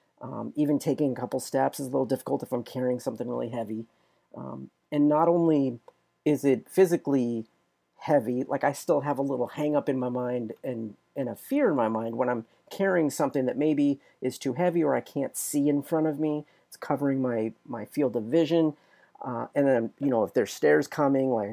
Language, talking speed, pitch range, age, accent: English, 210 wpm, 125-155 Hz, 40-59, American